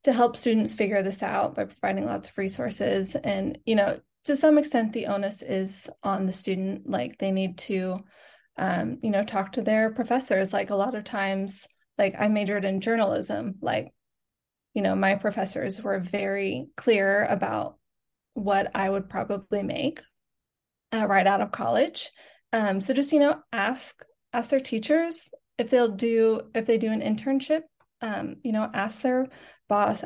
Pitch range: 200-245 Hz